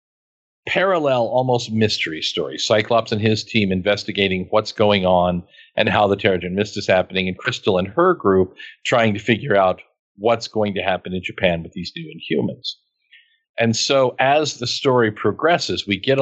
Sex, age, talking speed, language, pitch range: male, 50-69, 175 wpm, English, 95-125 Hz